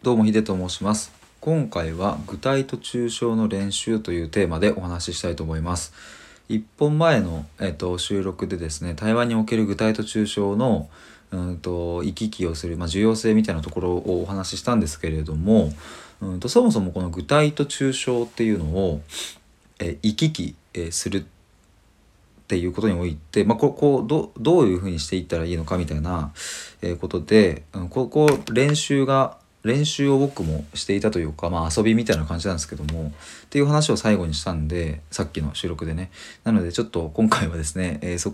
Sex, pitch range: male, 80-110 Hz